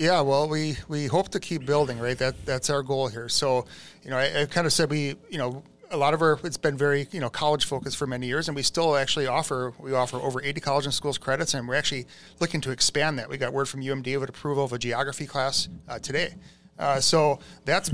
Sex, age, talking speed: male, 30-49, 255 wpm